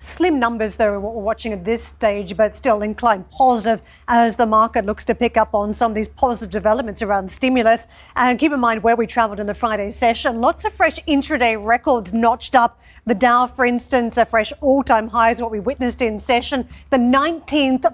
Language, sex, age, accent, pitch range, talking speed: English, female, 40-59, Australian, 220-255 Hz, 205 wpm